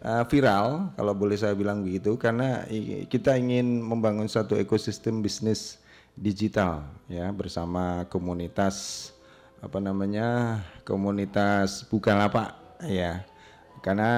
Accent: native